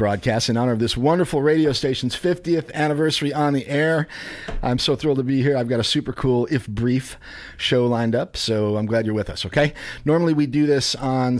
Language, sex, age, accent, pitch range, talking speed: English, male, 40-59, American, 115-150 Hz, 215 wpm